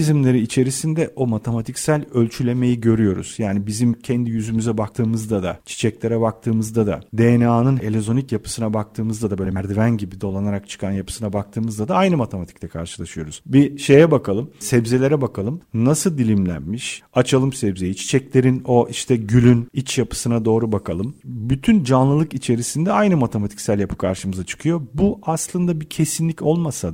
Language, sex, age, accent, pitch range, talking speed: Turkish, male, 40-59, native, 110-150 Hz, 135 wpm